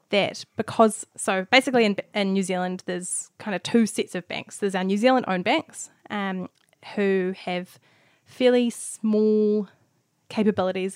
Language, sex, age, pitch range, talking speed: English, female, 10-29, 180-215 Hz, 150 wpm